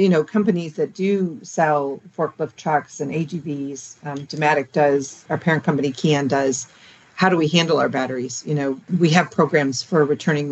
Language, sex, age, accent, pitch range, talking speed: English, female, 40-59, American, 145-175 Hz, 175 wpm